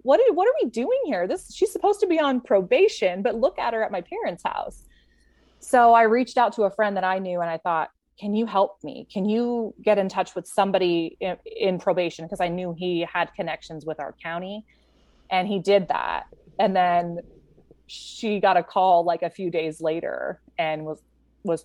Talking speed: 210 wpm